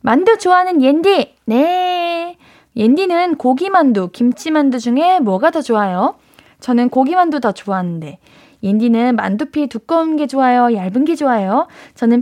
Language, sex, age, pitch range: Korean, female, 20-39, 220-305 Hz